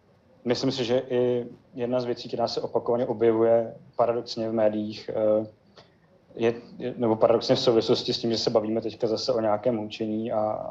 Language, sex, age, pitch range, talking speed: Czech, male, 30-49, 110-120 Hz, 170 wpm